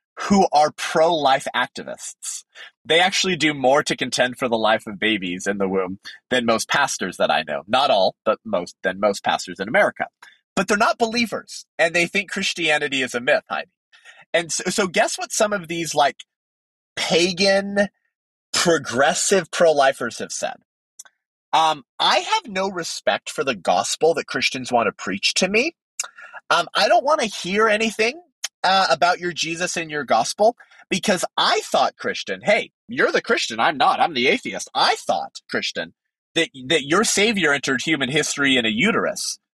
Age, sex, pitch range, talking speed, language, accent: 30-49, male, 135-200 Hz, 175 wpm, English, American